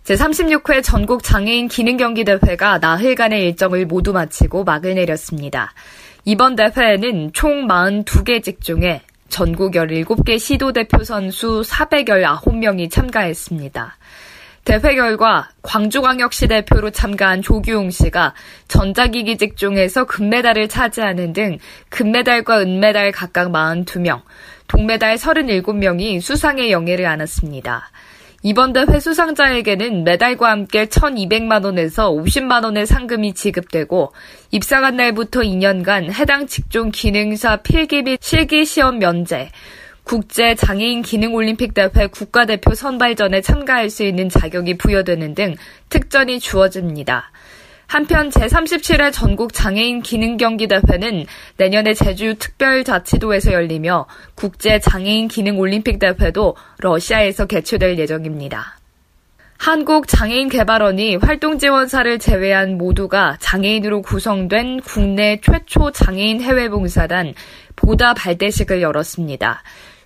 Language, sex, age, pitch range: Korean, female, 20-39, 185-240 Hz